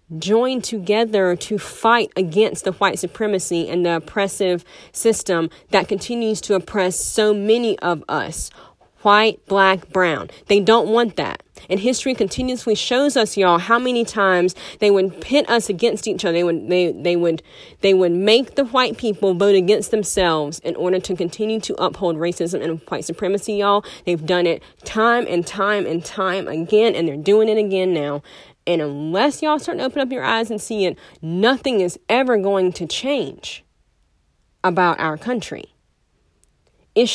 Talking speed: 170 wpm